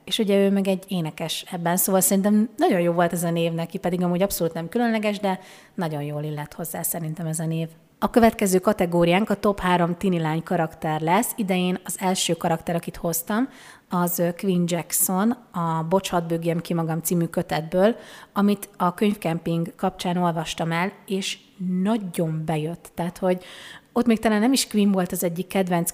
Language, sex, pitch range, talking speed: Hungarian, female, 170-205 Hz, 180 wpm